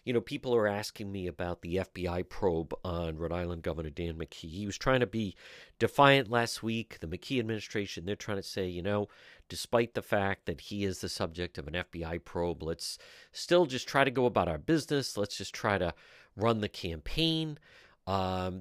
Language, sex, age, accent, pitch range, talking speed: English, male, 50-69, American, 90-115 Hz, 200 wpm